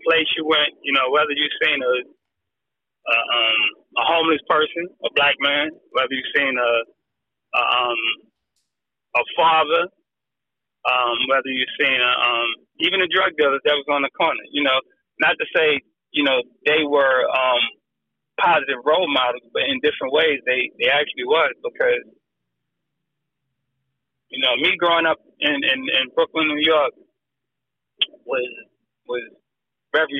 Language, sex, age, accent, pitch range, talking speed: English, male, 30-49, American, 130-180 Hz, 150 wpm